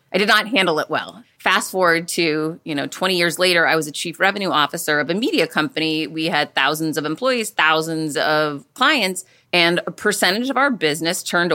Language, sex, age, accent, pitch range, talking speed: English, female, 30-49, American, 155-205 Hz, 205 wpm